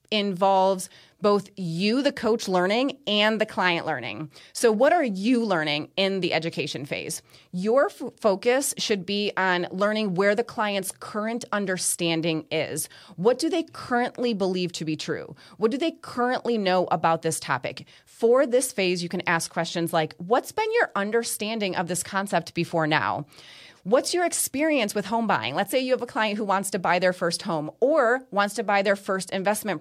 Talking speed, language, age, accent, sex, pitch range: 180 wpm, English, 30-49, American, female, 170-230 Hz